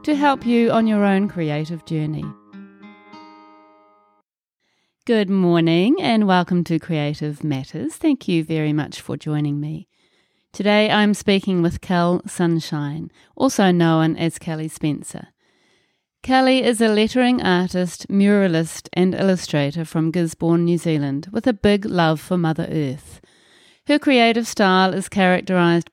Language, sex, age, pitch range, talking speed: English, female, 30-49, 160-200 Hz, 130 wpm